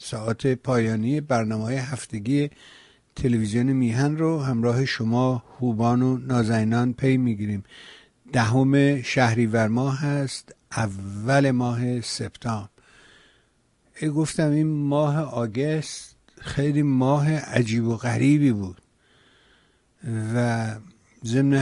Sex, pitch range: male, 120-140 Hz